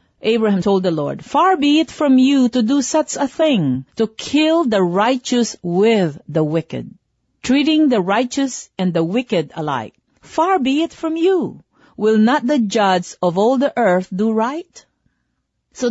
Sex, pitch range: female, 175-275 Hz